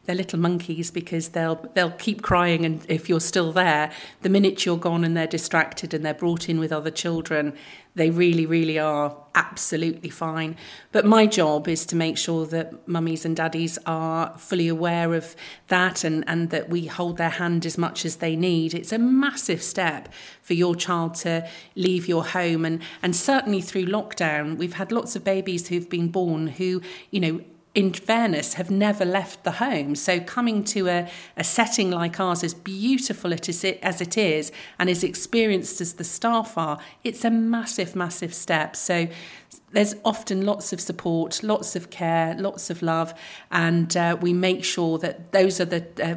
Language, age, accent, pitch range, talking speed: English, 40-59, British, 165-185 Hz, 185 wpm